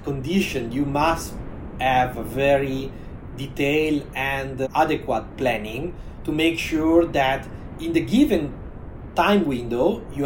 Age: 30-49